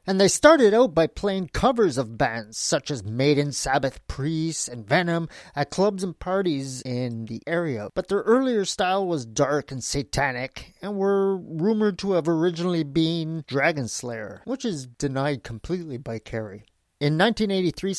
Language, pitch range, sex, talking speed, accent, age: English, 140-195 Hz, male, 160 wpm, American, 30-49